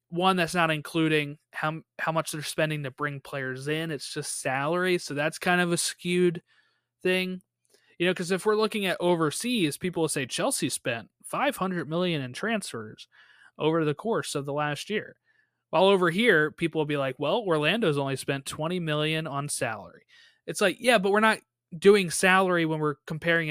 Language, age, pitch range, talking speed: English, 20-39, 140-175 Hz, 185 wpm